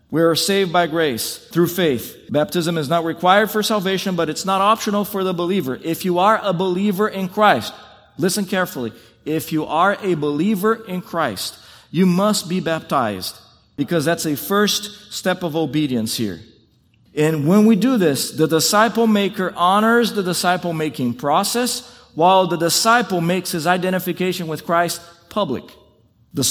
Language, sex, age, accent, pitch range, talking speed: English, male, 40-59, American, 155-190 Hz, 160 wpm